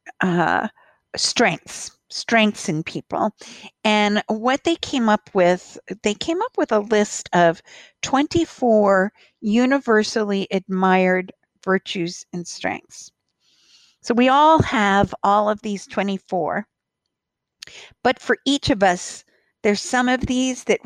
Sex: female